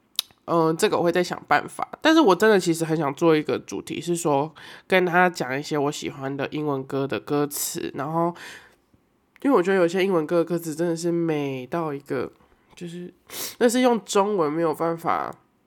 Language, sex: Chinese, male